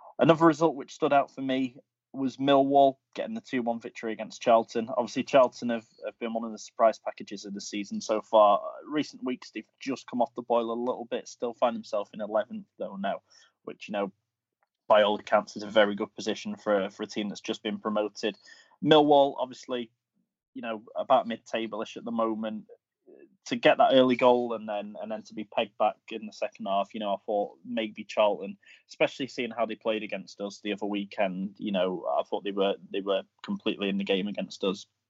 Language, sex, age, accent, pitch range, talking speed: English, male, 20-39, British, 105-125 Hz, 210 wpm